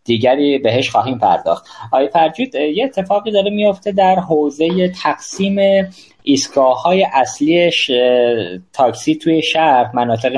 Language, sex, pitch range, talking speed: Persian, male, 120-155 Hz, 115 wpm